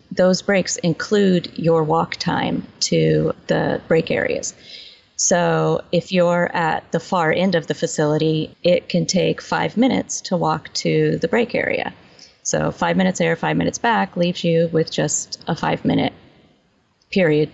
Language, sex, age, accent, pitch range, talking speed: English, female, 30-49, American, 160-205 Hz, 155 wpm